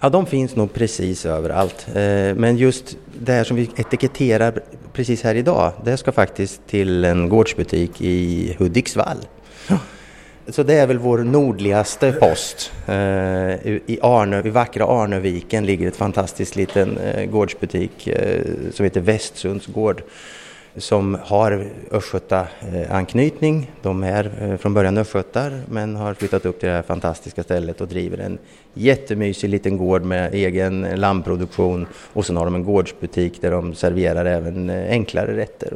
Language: Swedish